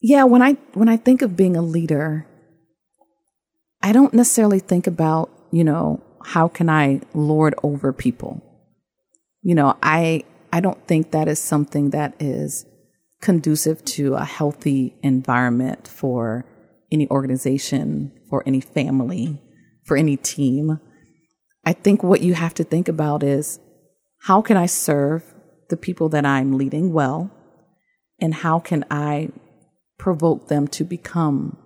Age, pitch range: 40-59, 150-180 Hz